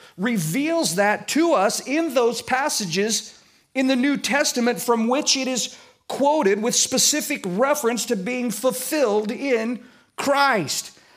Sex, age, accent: male, 50-69, American